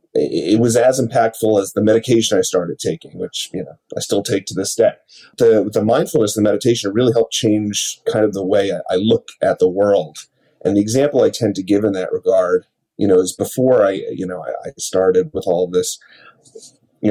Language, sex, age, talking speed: English, male, 30-49, 220 wpm